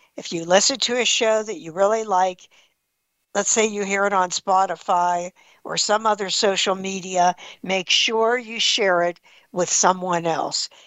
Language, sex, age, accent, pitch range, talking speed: English, female, 60-79, American, 185-240 Hz, 165 wpm